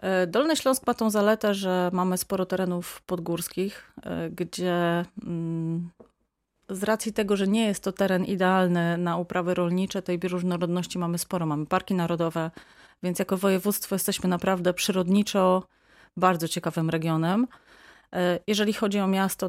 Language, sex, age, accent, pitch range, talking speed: Polish, female, 30-49, native, 175-200 Hz, 130 wpm